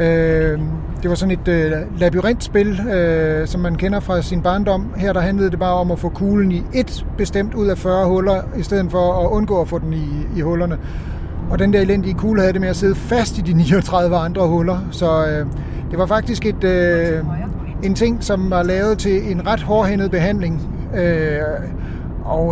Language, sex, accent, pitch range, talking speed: Danish, male, native, 160-190 Hz, 200 wpm